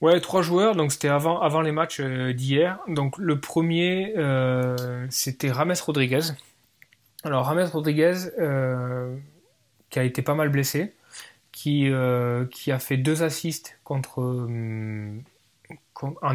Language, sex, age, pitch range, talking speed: French, male, 20-39, 125-150 Hz, 130 wpm